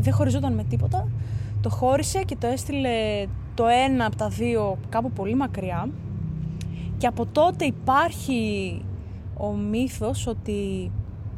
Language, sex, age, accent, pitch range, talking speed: Greek, female, 20-39, native, 95-120 Hz, 125 wpm